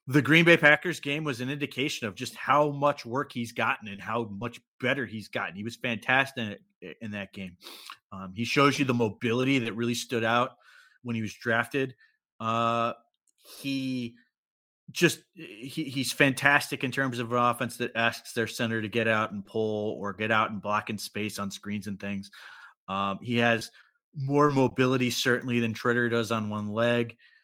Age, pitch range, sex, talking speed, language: 30-49, 115-135 Hz, male, 185 wpm, English